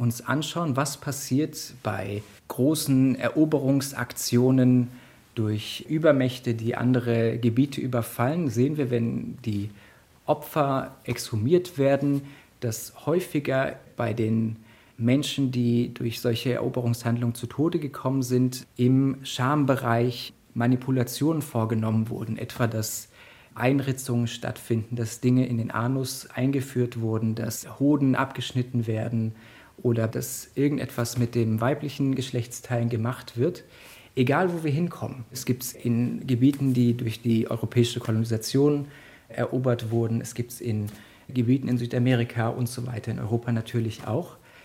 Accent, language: German, German